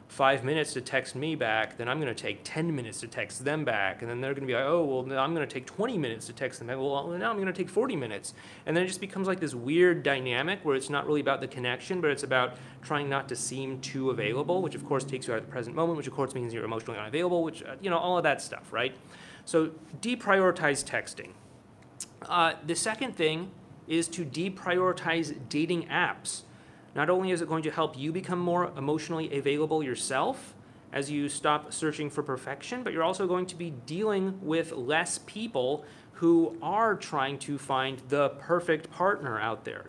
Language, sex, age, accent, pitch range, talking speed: English, male, 30-49, American, 135-170 Hz, 220 wpm